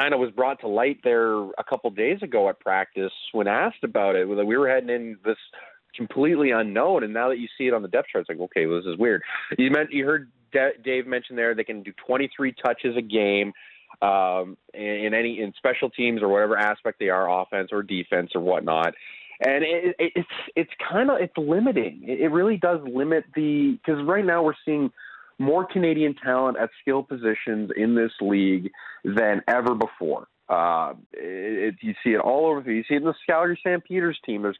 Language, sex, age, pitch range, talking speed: English, male, 30-49, 110-150 Hz, 205 wpm